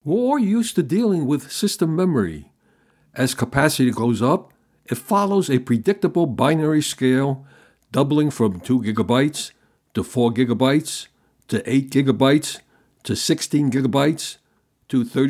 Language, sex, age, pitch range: English, male, 60-79, 120-155 Hz